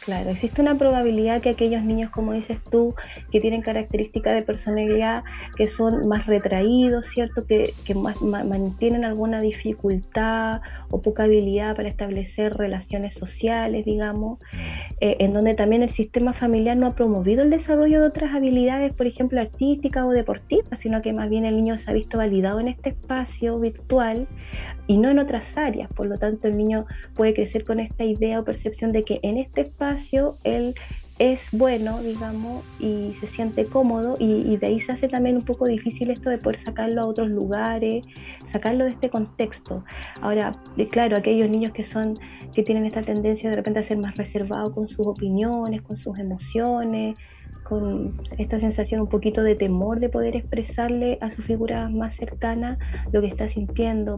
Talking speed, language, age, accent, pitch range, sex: 180 wpm, Spanish, 30-49, American, 210-235 Hz, female